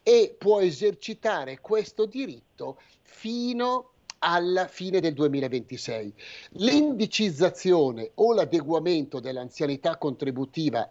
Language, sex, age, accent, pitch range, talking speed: Italian, male, 50-69, native, 130-170 Hz, 90 wpm